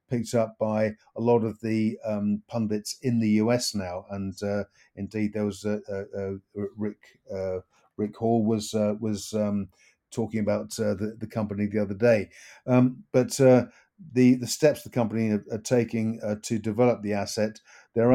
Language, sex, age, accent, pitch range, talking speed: English, male, 50-69, British, 105-115 Hz, 180 wpm